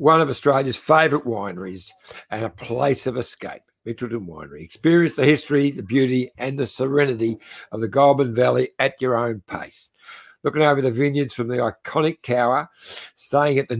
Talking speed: 170 wpm